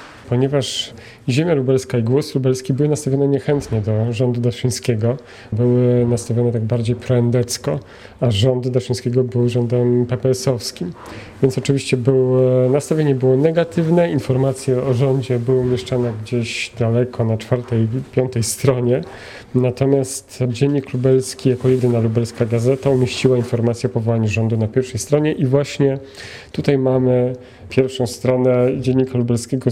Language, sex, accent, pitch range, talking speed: Polish, male, native, 115-135 Hz, 125 wpm